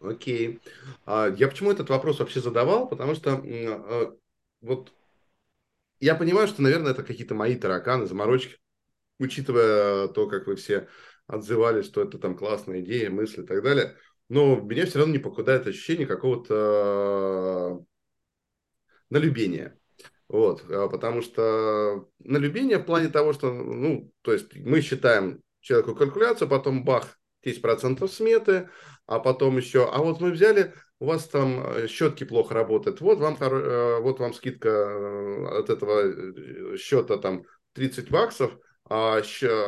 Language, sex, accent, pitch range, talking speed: Russian, male, native, 115-180 Hz, 135 wpm